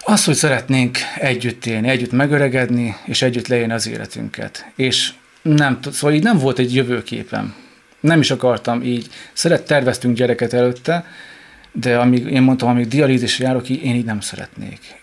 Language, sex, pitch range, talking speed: Hungarian, male, 120-140 Hz, 150 wpm